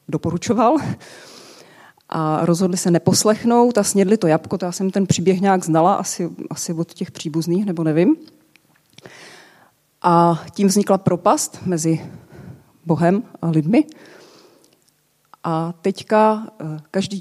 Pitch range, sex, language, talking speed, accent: 160-190 Hz, female, Czech, 115 wpm, native